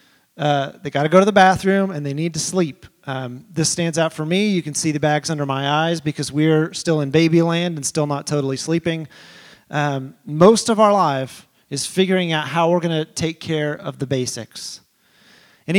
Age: 30-49